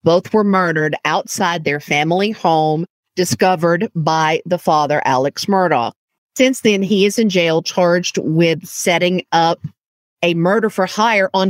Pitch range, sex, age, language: 160-205 Hz, female, 50-69, English